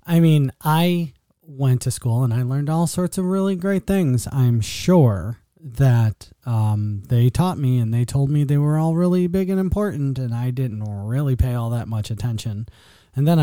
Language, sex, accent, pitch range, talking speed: English, male, American, 120-155 Hz, 195 wpm